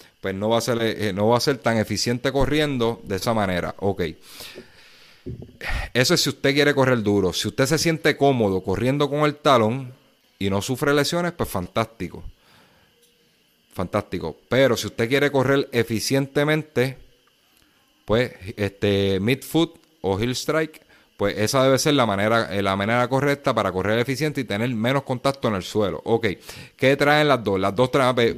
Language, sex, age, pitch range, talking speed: Spanish, male, 30-49, 105-140 Hz, 170 wpm